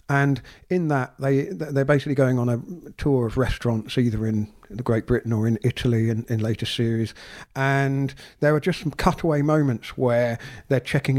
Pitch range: 115-140 Hz